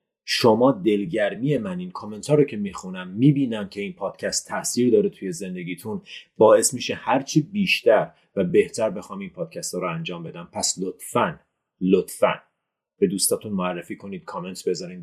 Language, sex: Persian, male